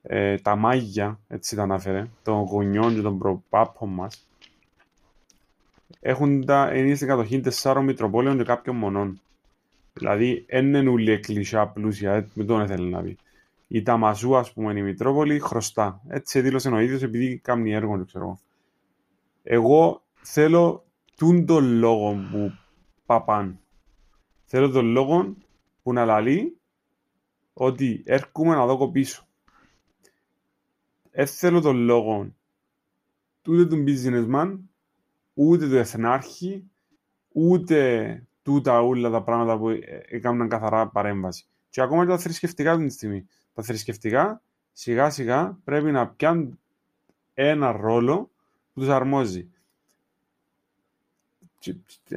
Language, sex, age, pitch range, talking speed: Greek, male, 20-39, 105-135 Hz, 115 wpm